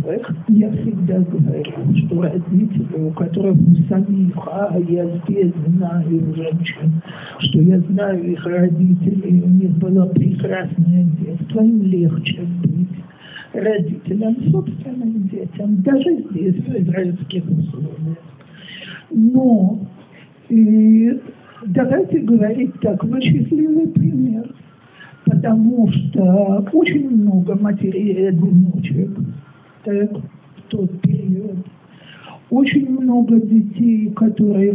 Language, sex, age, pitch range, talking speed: Russian, male, 60-79, 175-215 Hz, 100 wpm